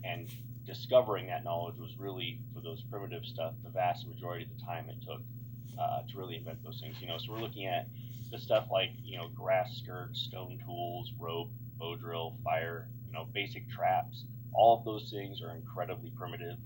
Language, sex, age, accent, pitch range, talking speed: English, male, 20-39, American, 115-120 Hz, 195 wpm